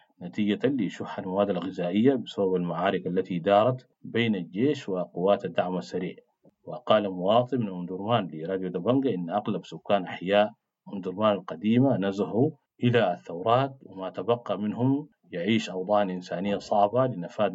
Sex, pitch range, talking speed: male, 90-115 Hz, 125 wpm